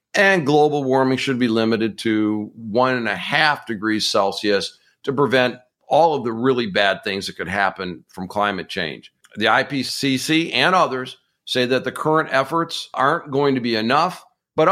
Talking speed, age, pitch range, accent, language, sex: 170 wpm, 50-69, 115-145 Hz, American, English, male